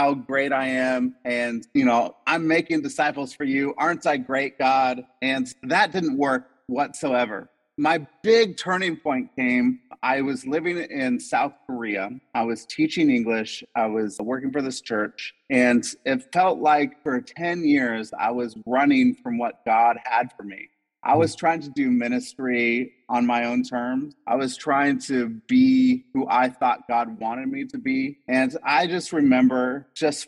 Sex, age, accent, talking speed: male, 30-49, American, 170 wpm